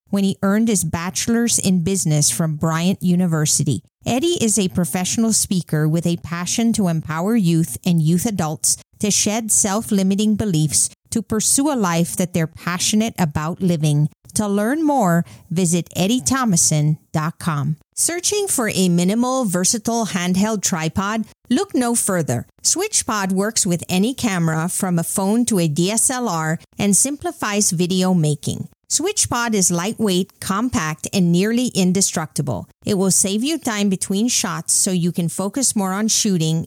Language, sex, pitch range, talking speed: English, female, 170-220 Hz, 145 wpm